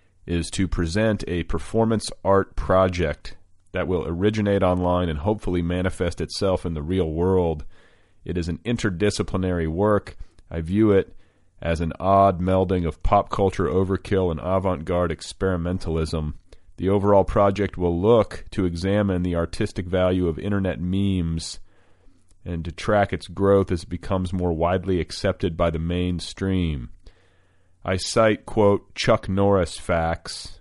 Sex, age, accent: male, 40-59, American